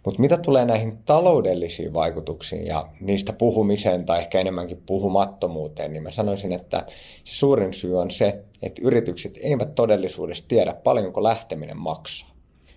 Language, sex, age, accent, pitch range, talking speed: Finnish, male, 30-49, native, 90-110 Hz, 140 wpm